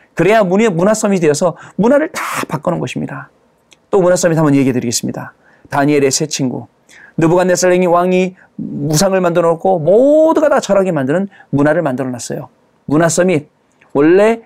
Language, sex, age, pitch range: Korean, male, 40-59, 150-210 Hz